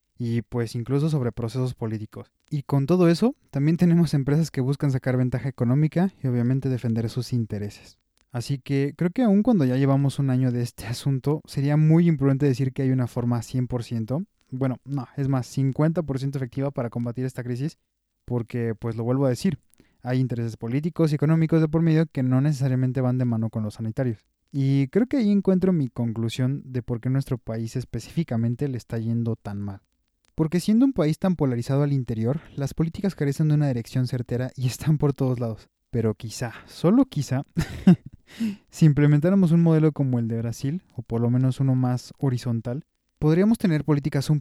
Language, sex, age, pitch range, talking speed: Spanish, male, 20-39, 120-145 Hz, 190 wpm